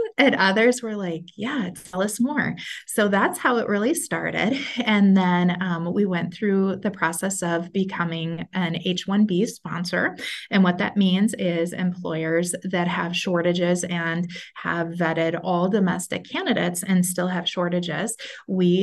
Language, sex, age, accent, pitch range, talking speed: English, female, 20-39, American, 170-205 Hz, 145 wpm